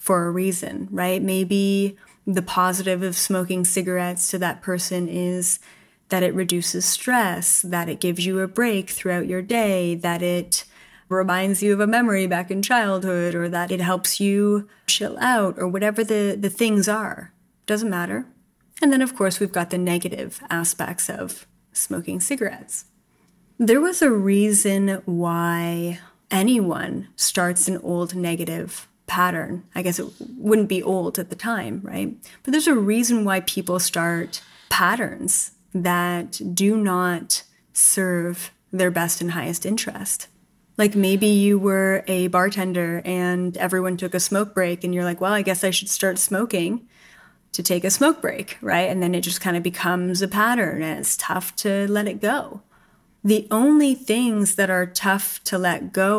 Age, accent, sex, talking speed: 20-39, American, female, 165 wpm